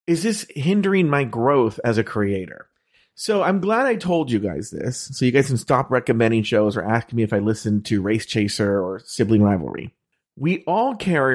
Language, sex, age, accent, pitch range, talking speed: English, male, 40-59, American, 110-155 Hz, 200 wpm